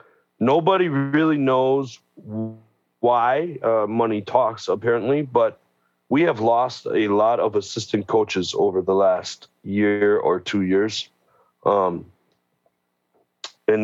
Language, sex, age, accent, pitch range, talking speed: English, male, 40-59, American, 100-145 Hz, 115 wpm